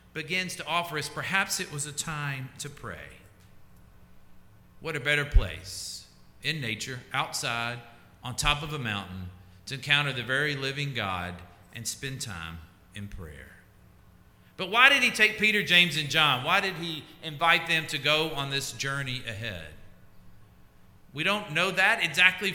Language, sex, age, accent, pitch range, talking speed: English, male, 50-69, American, 110-165 Hz, 155 wpm